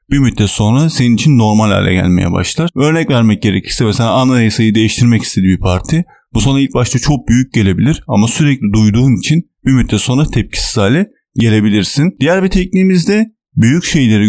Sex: male